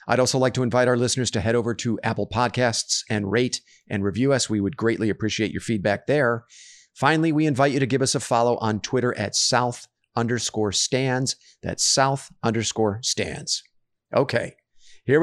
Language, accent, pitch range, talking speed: English, American, 115-135 Hz, 180 wpm